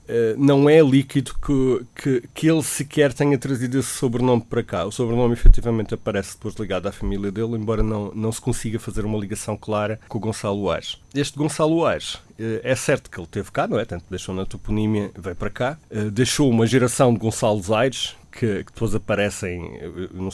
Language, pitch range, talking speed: Portuguese, 100-120 Hz, 190 wpm